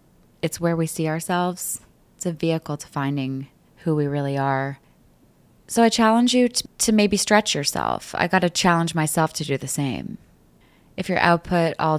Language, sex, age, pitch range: English, female, 20-39, 150-185 Hz